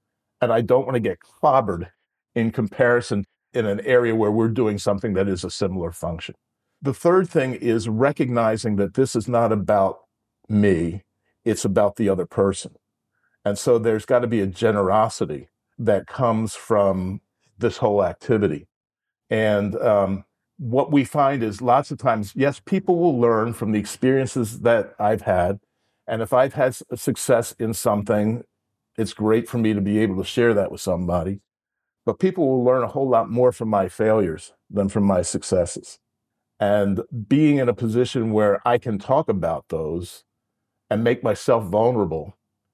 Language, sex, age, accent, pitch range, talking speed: English, male, 50-69, American, 105-125 Hz, 170 wpm